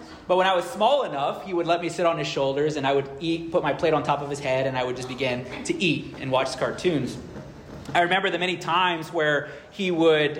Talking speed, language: 260 wpm, English